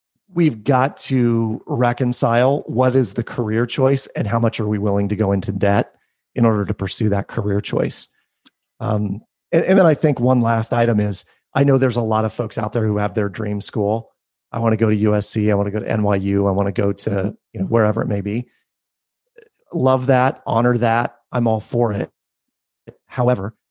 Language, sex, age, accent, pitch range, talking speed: English, male, 30-49, American, 105-130 Hz, 210 wpm